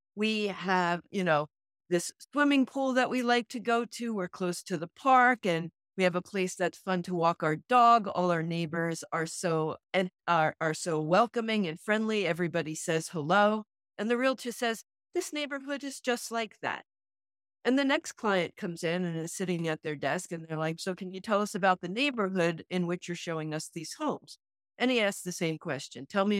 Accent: American